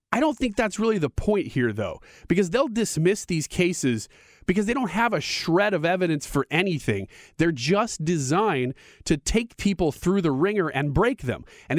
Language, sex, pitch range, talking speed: English, male, 135-195 Hz, 190 wpm